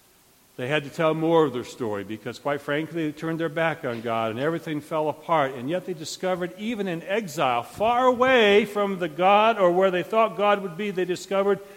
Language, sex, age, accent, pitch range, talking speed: English, male, 60-79, American, 145-220 Hz, 215 wpm